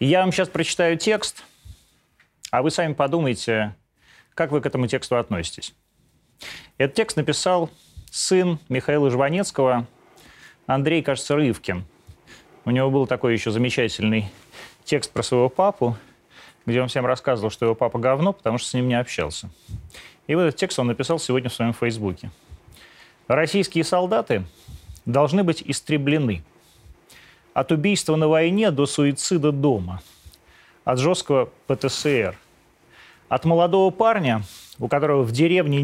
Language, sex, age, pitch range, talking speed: Russian, male, 30-49, 120-165 Hz, 135 wpm